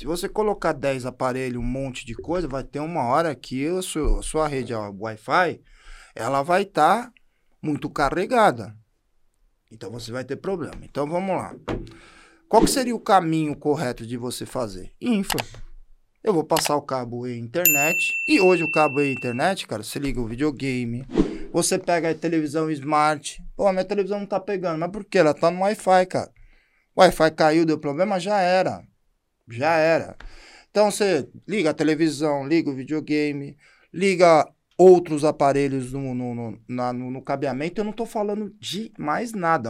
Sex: male